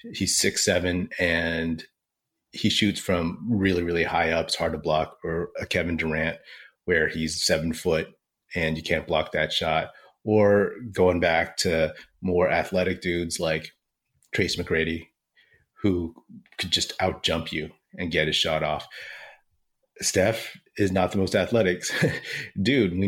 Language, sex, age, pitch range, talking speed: English, male, 30-49, 80-95 Hz, 150 wpm